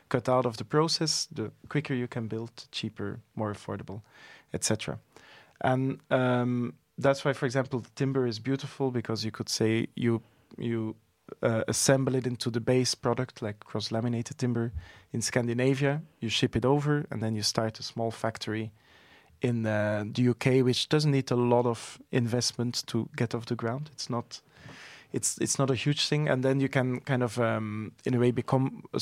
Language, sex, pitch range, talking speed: French, male, 115-135 Hz, 185 wpm